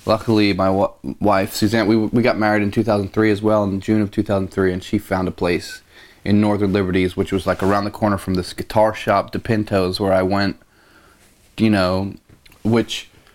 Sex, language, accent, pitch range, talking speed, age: male, English, American, 95-110 Hz, 210 wpm, 30-49